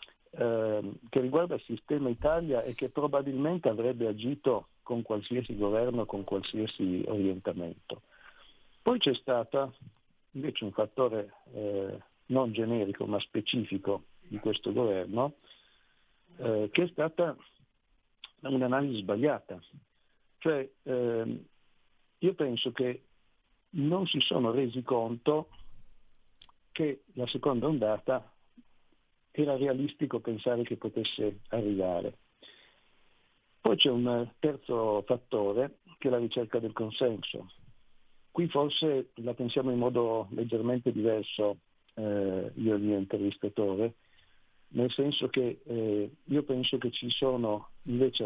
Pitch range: 110-135 Hz